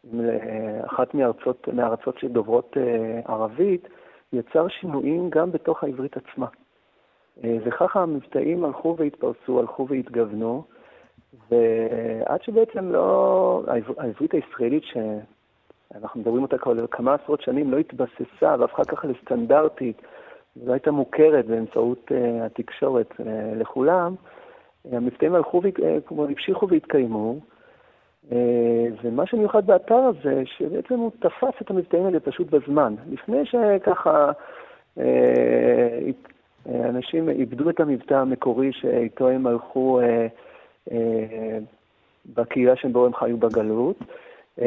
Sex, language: male, Hebrew